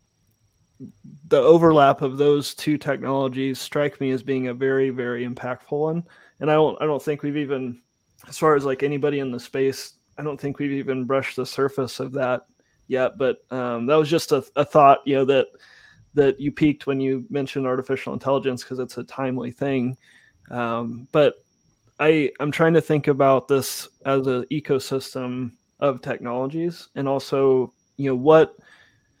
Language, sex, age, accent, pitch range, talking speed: English, male, 30-49, American, 130-145 Hz, 175 wpm